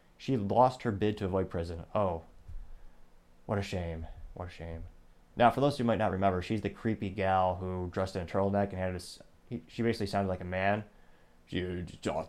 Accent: American